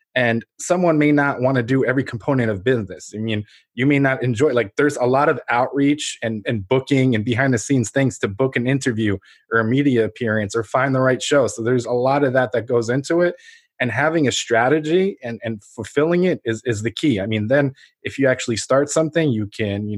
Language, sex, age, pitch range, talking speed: English, male, 20-39, 115-145 Hz, 230 wpm